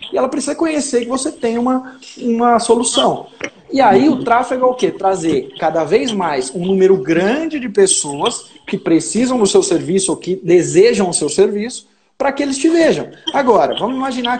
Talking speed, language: 190 wpm, Portuguese